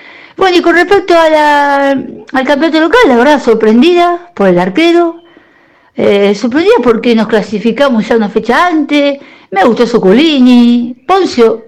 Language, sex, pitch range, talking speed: Spanish, female, 225-300 Hz, 145 wpm